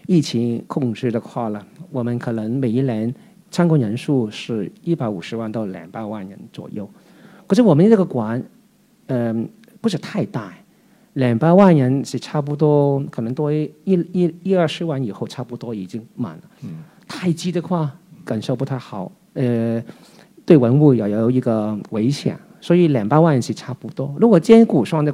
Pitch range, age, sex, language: 120-180 Hz, 50-69, male, Chinese